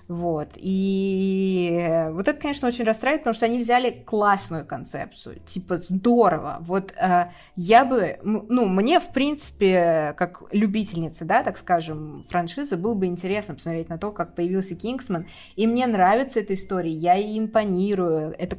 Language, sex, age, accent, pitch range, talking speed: Russian, female, 20-39, native, 170-215 Hz, 150 wpm